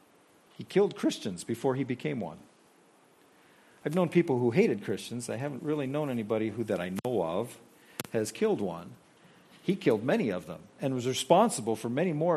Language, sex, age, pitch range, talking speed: English, male, 50-69, 120-155 Hz, 180 wpm